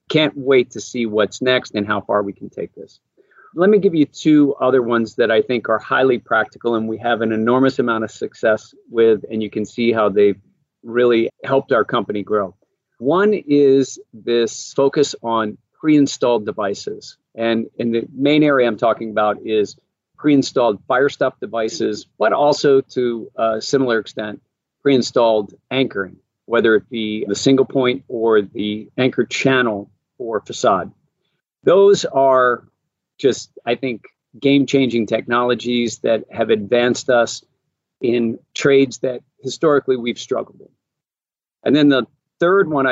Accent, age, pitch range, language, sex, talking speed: American, 40-59, 115-140 Hz, English, male, 150 wpm